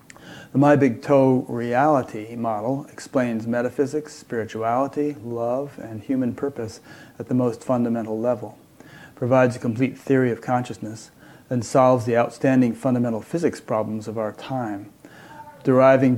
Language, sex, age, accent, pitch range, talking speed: English, male, 30-49, American, 115-135 Hz, 130 wpm